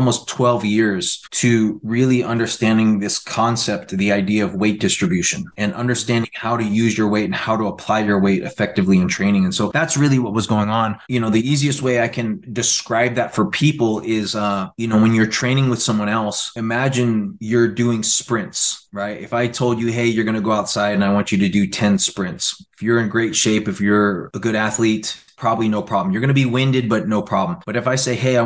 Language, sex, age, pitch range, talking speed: English, male, 20-39, 105-125 Hz, 230 wpm